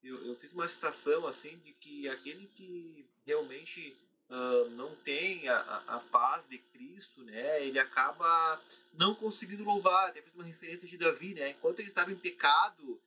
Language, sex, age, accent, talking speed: Portuguese, male, 30-49, Brazilian, 175 wpm